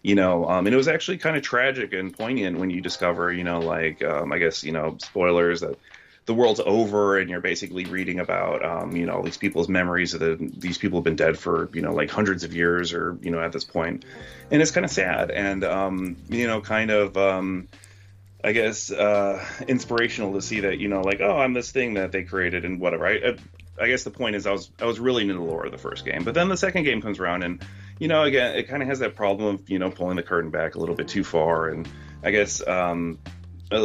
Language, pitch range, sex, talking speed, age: English, 85-110 Hz, male, 255 wpm, 30-49